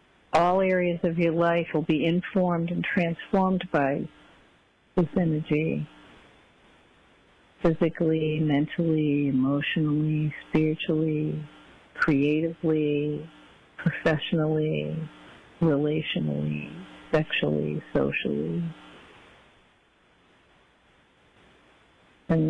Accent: American